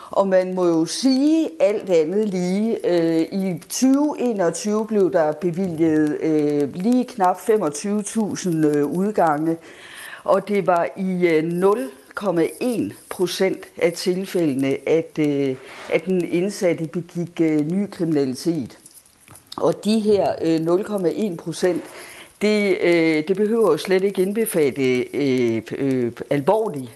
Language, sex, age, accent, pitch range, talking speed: Danish, female, 50-69, native, 155-205 Hz, 100 wpm